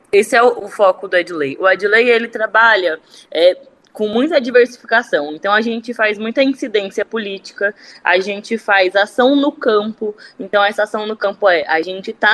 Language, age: Portuguese, 20-39